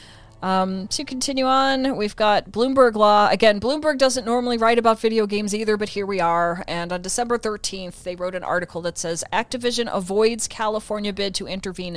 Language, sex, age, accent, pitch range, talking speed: English, female, 30-49, American, 170-215 Hz, 185 wpm